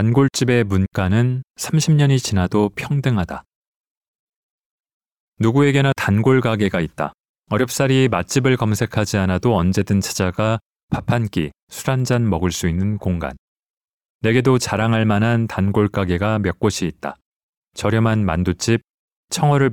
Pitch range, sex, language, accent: 100-120 Hz, male, Korean, native